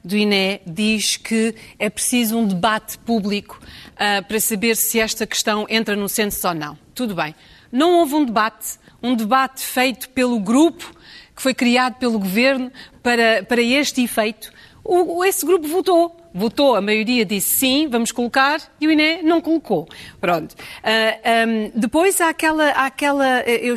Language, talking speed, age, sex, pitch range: Portuguese, 165 wpm, 40-59, female, 225-310 Hz